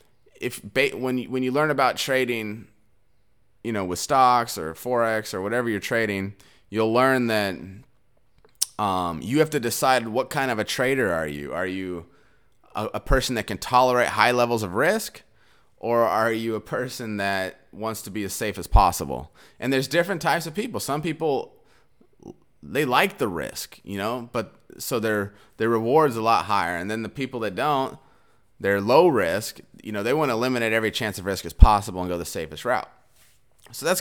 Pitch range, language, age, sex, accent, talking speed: 100-130 Hz, English, 30-49, male, American, 185 wpm